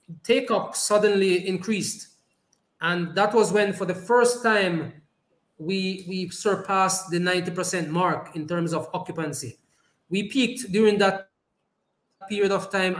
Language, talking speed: English, 135 wpm